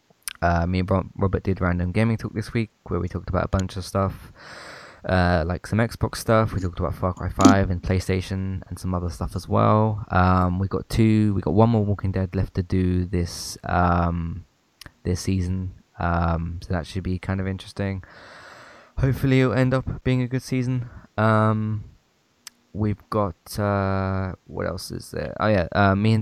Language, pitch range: English, 90-105 Hz